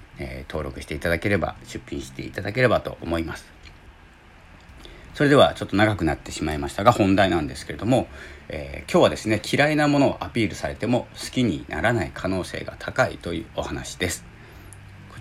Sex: male